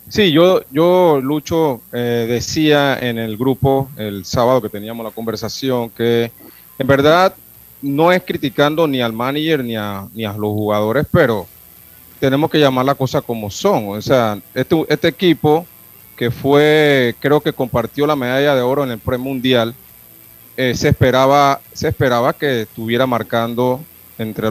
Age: 30-49